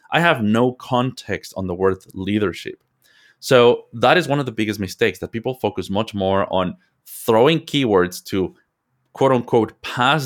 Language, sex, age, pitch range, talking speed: Italian, male, 30-49, 95-120 Hz, 165 wpm